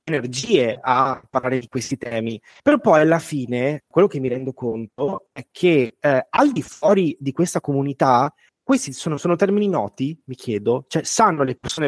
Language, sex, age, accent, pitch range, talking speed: Italian, male, 30-49, native, 125-160 Hz, 175 wpm